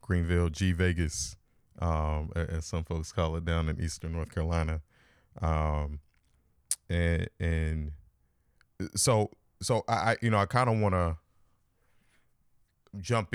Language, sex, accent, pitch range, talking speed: English, male, American, 80-95 Hz, 125 wpm